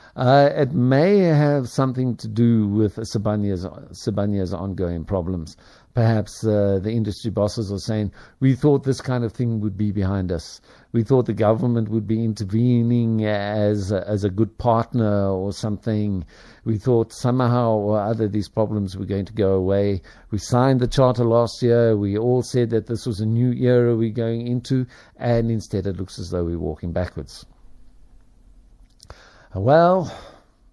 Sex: male